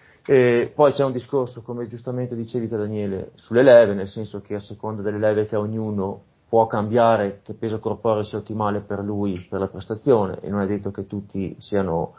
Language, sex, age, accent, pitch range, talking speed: Italian, male, 30-49, native, 105-125 Hz, 190 wpm